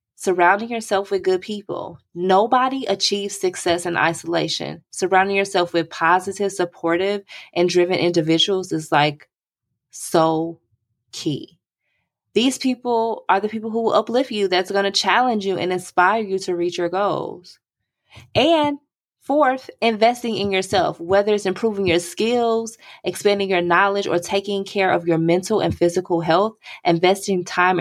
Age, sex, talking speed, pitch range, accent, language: 20-39, female, 145 wpm, 165-205 Hz, American, English